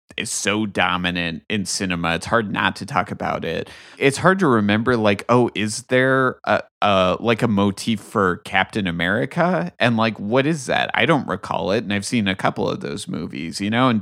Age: 30-49